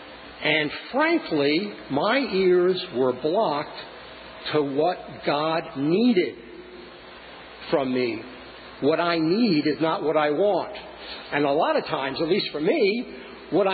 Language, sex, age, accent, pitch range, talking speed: English, male, 50-69, American, 165-230 Hz, 130 wpm